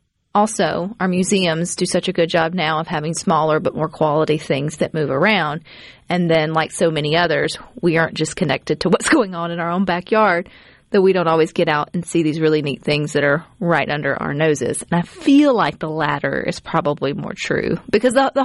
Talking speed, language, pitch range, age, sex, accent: 220 wpm, English, 160-195 Hz, 30-49, female, American